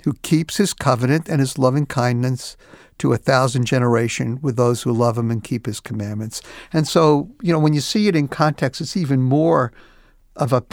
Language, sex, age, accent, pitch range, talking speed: English, male, 60-79, American, 125-160 Hz, 195 wpm